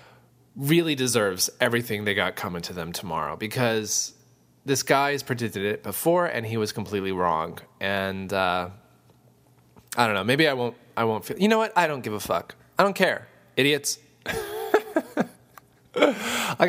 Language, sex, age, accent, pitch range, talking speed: English, male, 20-39, American, 105-130 Hz, 160 wpm